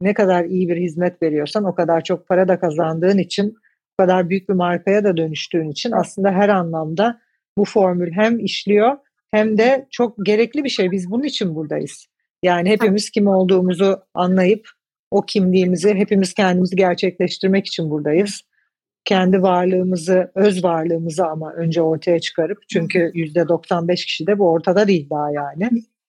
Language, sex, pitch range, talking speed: Turkish, female, 170-205 Hz, 155 wpm